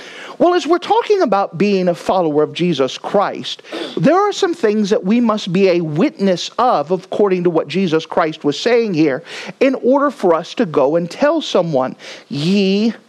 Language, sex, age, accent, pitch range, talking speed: English, male, 40-59, American, 175-275 Hz, 185 wpm